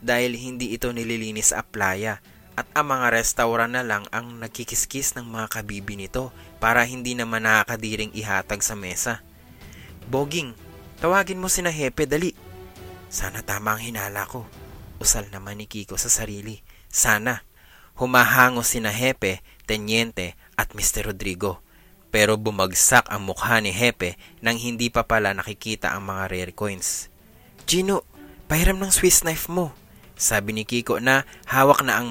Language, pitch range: English, 100-120 Hz